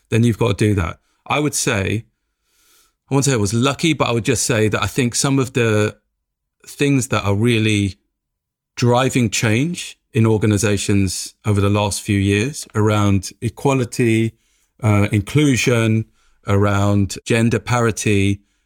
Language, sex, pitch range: English, male, 100-120 Hz